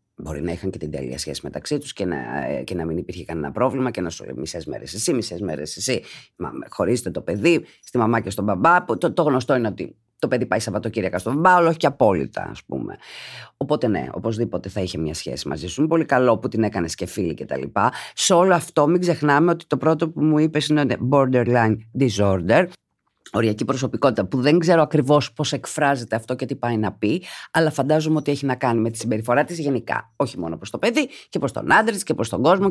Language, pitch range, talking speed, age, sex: Greek, 110-160 Hz, 225 wpm, 30-49, female